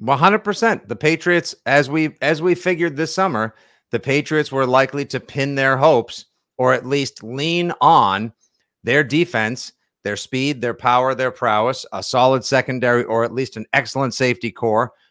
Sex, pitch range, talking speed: male, 120-145 Hz, 155 wpm